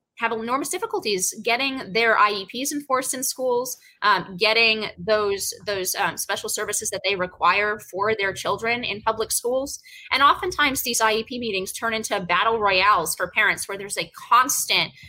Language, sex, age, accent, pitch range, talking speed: English, female, 20-39, American, 195-265 Hz, 160 wpm